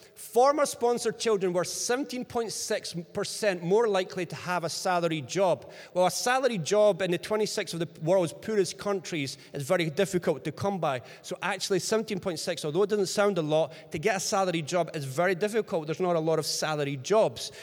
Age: 30-49